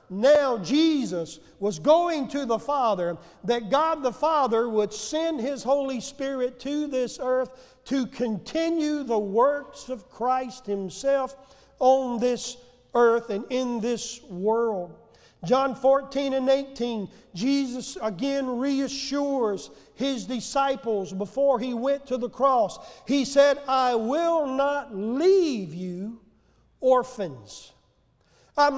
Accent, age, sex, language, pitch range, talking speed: American, 50-69, male, English, 230-295 Hz, 120 wpm